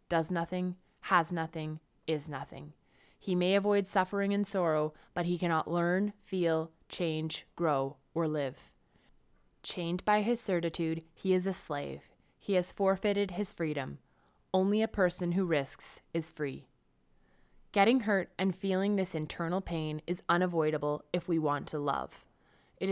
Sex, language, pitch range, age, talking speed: female, English, 155-195 Hz, 20-39, 145 wpm